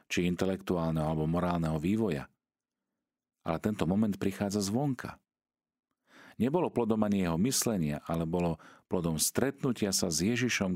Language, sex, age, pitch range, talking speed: Slovak, male, 40-59, 80-110 Hz, 125 wpm